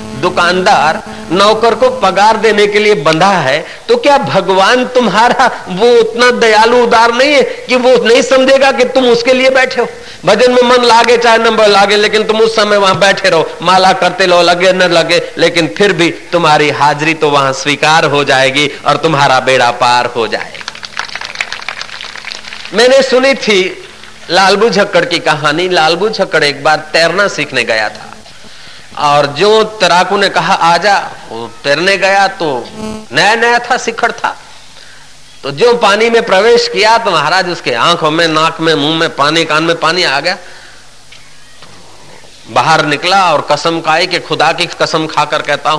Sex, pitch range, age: male, 155-220 Hz, 50-69